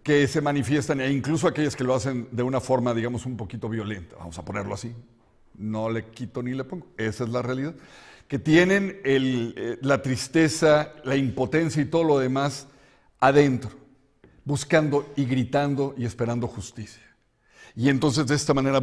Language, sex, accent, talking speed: Spanish, male, Mexican, 170 wpm